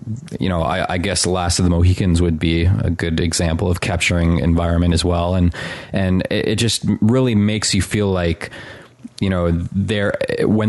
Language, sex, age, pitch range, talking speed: English, male, 20-39, 85-100 Hz, 185 wpm